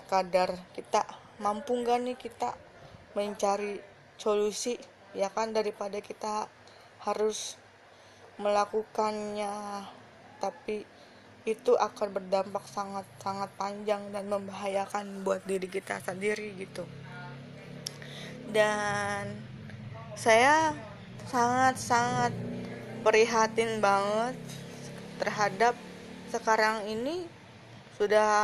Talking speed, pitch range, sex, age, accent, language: 75 wpm, 195-220 Hz, female, 20-39, native, Indonesian